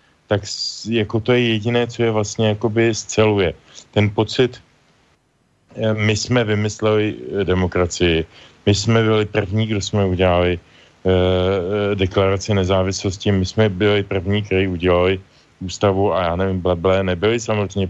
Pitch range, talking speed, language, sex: 95-115 Hz, 130 wpm, Slovak, male